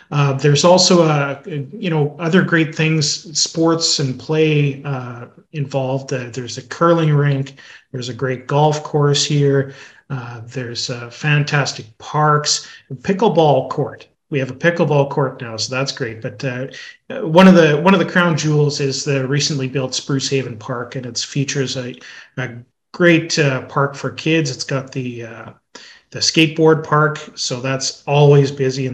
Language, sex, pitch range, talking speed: English, male, 130-150 Hz, 170 wpm